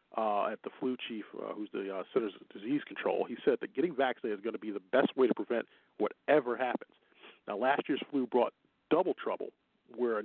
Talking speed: 225 wpm